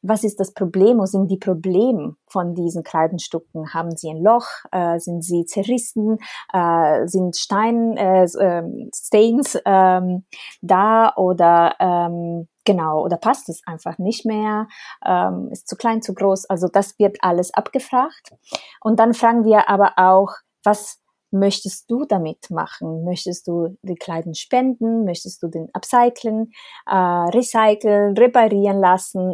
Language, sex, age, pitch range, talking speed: German, female, 20-39, 170-210 Hz, 140 wpm